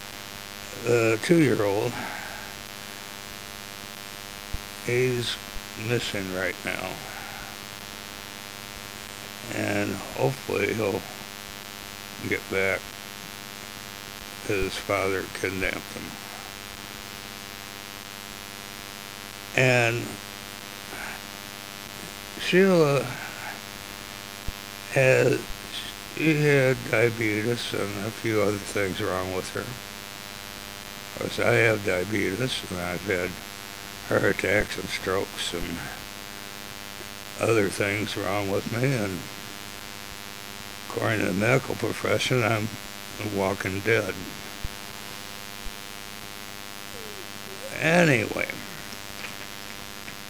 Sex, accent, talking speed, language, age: male, American, 70 wpm, English, 60-79